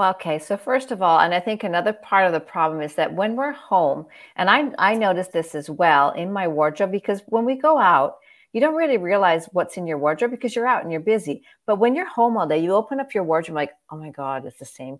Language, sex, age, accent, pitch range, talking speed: English, female, 50-69, American, 170-230 Hz, 270 wpm